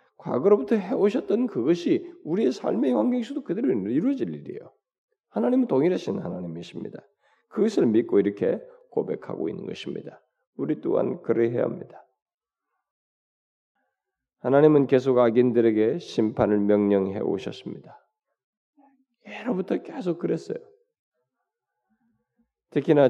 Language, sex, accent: Korean, male, native